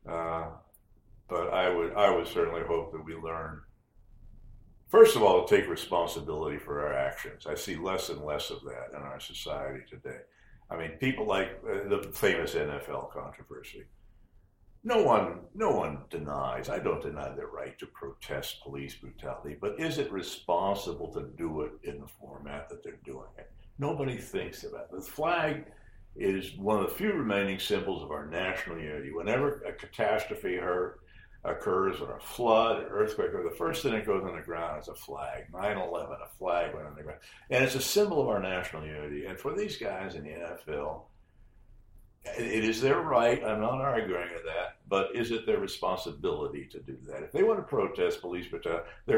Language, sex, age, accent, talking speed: English, male, 60-79, American, 185 wpm